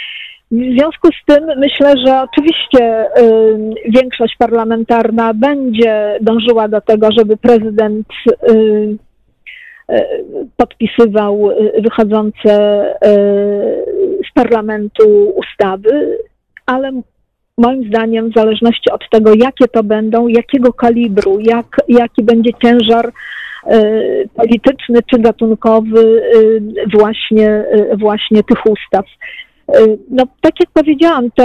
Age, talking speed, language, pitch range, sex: 40-59, 90 wpm, Polish, 220-255 Hz, female